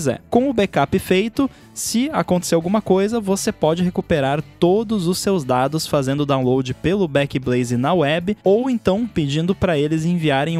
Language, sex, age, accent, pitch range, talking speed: Portuguese, male, 20-39, Brazilian, 135-195 Hz, 155 wpm